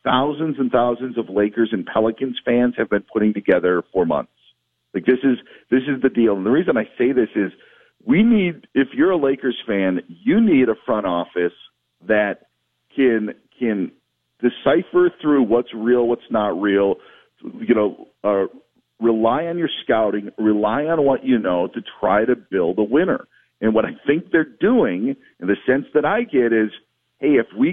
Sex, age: male, 50-69